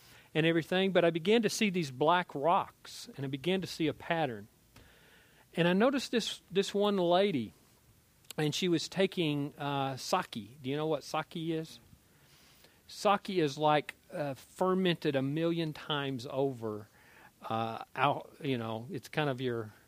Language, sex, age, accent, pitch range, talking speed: English, male, 40-59, American, 120-155 Hz, 155 wpm